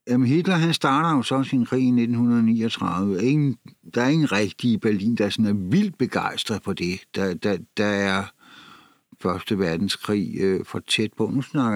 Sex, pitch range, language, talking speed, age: male, 115-145 Hz, Danish, 170 wpm, 60-79